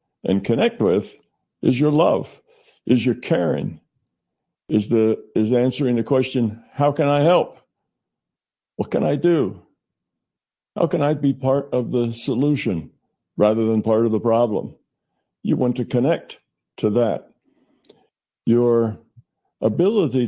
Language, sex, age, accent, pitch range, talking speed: English, male, 60-79, American, 105-130 Hz, 135 wpm